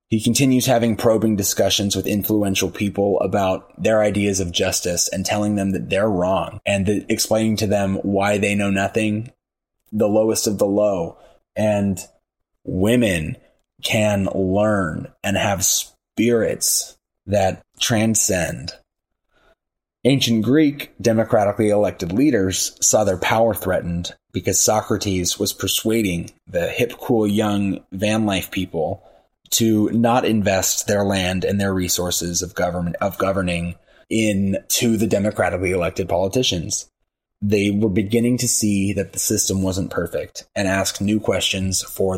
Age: 20-39